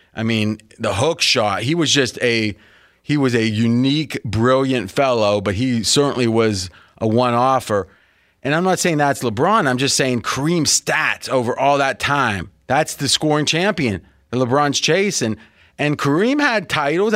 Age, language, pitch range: 30-49, English, 120-160 Hz